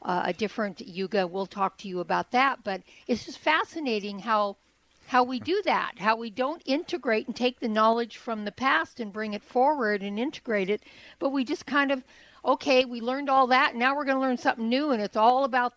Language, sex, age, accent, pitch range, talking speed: English, female, 60-79, American, 185-240 Hz, 220 wpm